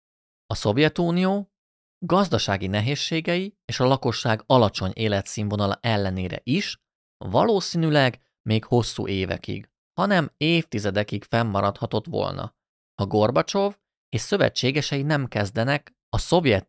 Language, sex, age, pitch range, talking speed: Hungarian, male, 30-49, 100-140 Hz, 95 wpm